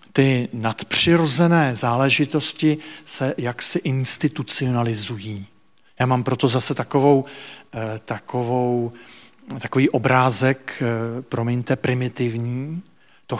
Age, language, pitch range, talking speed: 40-59, Czech, 120-145 Hz, 65 wpm